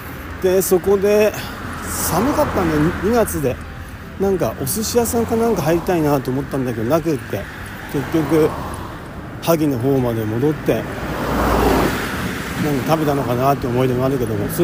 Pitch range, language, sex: 115-165 Hz, Japanese, male